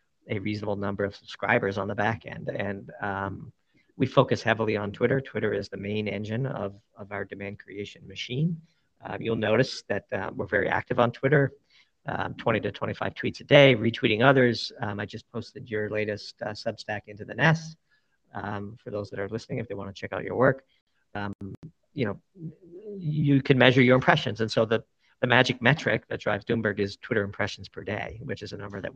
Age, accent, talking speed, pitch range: 50-69, American, 205 wpm, 100-125 Hz